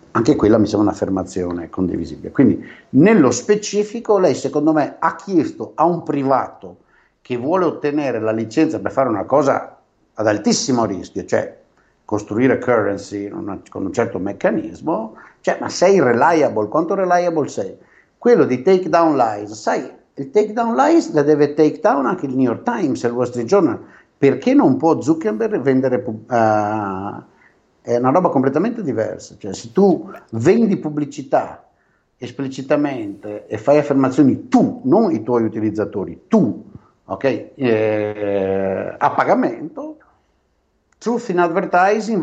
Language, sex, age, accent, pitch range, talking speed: Italian, male, 60-79, native, 110-170 Hz, 140 wpm